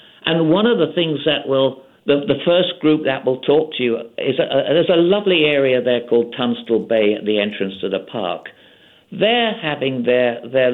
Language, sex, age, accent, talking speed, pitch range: English, male, 60-79, British, 205 wpm, 120-150 Hz